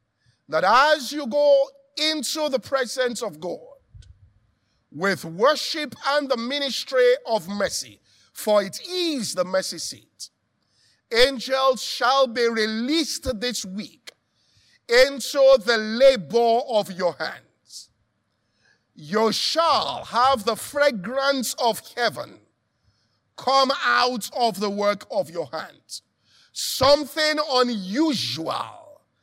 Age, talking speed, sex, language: 50-69, 105 wpm, male, English